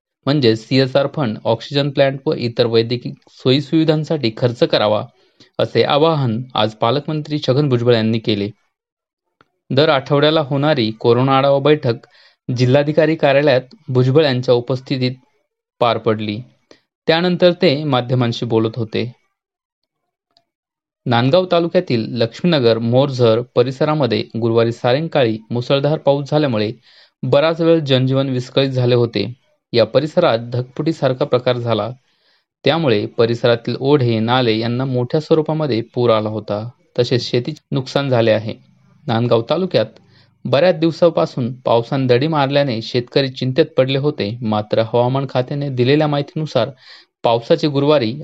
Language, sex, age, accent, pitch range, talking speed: Marathi, male, 30-49, native, 120-150 Hz, 115 wpm